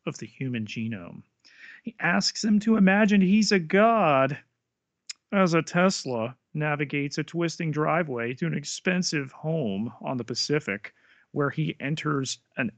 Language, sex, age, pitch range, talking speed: English, male, 40-59, 115-180 Hz, 140 wpm